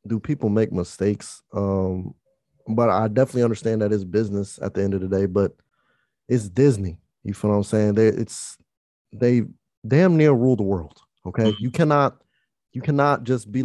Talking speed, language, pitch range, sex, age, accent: 180 wpm, English, 105-125 Hz, male, 20-39, American